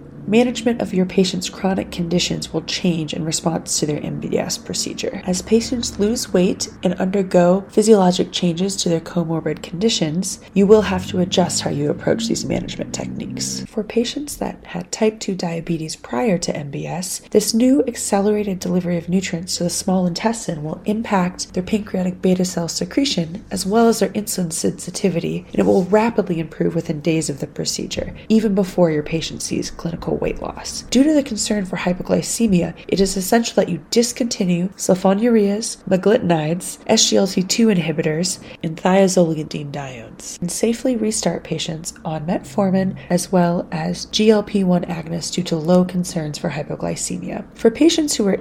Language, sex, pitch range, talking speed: English, female, 170-215 Hz, 160 wpm